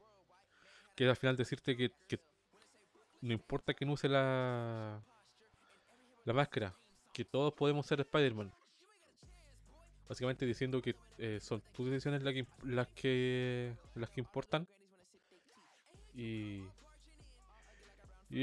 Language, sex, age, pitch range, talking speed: Spanish, male, 20-39, 125-150 Hz, 115 wpm